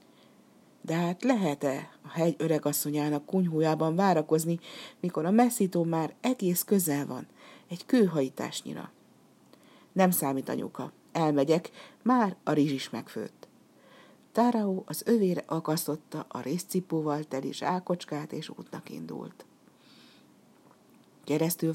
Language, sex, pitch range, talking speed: Hungarian, female, 150-200 Hz, 105 wpm